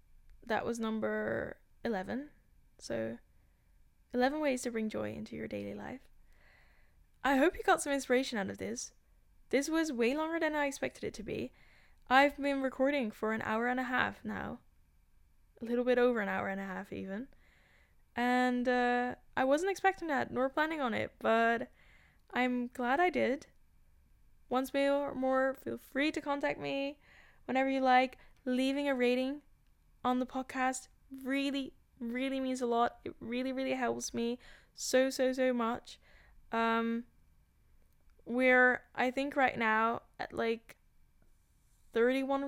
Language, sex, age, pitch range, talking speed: English, female, 10-29, 220-270 Hz, 150 wpm